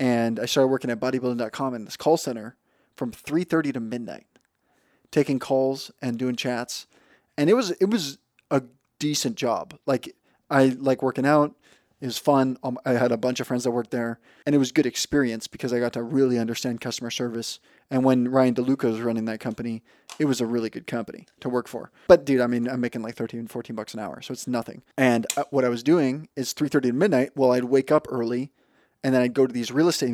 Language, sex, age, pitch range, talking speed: English, male, 20-39, 120-135 Hz, 220 wpm